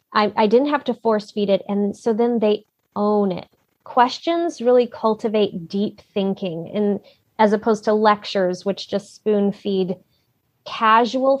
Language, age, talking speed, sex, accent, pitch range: English, 20-39, 155 wpm, female, American, 205-270 Hz